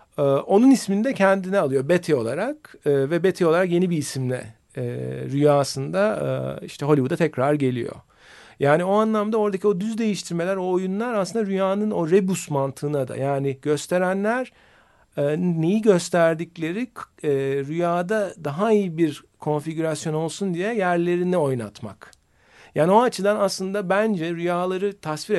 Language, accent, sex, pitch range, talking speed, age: Turkish, native, male, 140-200 Hz, 125 wpm, 50-69